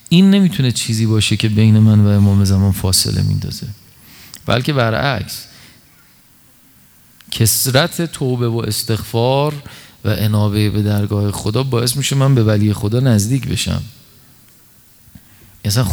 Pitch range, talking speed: 105-125 Hz, 120 wpm